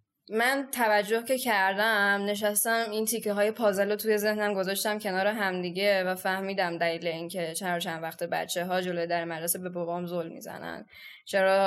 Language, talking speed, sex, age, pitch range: Persian, 170 wpm, female, 10-29, 190-220 Hz